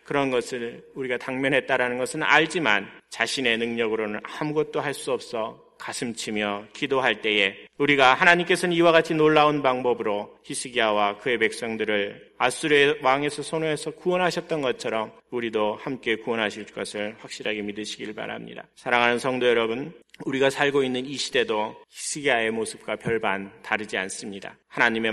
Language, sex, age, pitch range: Korean, male, 40-59, 115-150 Hz